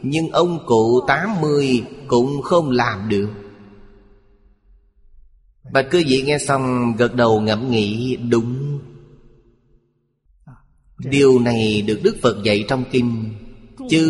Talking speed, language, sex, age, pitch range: 120 wpm, Vietnamese, male, 30-49, 115-150 Hz